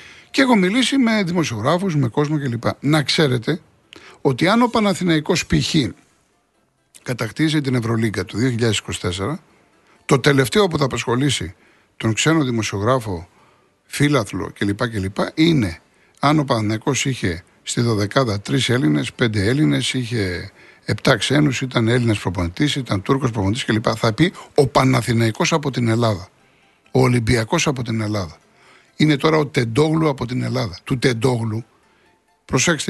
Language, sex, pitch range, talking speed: Greek, male, 110-155 Hz, 140 wpm